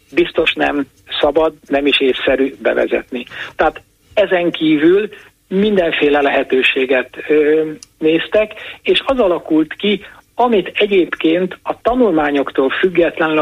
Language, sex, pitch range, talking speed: Hungarian, male, 140-185 Hz, 100 wpm